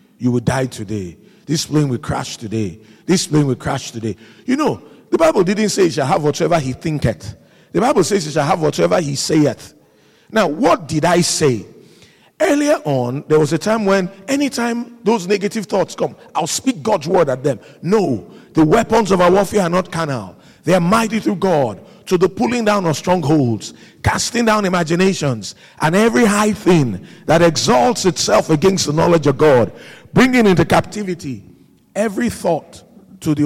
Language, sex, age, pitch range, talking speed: English, male, 50-69, 140-205 Hz, 185 wpm